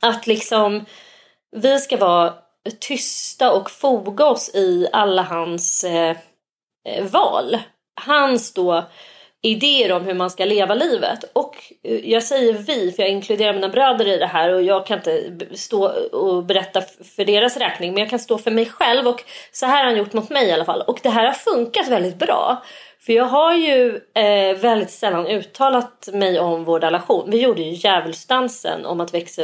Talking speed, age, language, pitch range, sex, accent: 175 wpm, 30-49, Swedish, 180-250 Hz, female, native